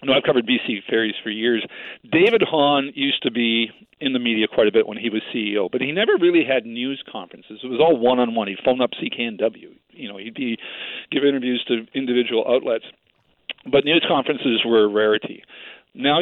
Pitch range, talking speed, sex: 120-145 Hz, 200 wpm, male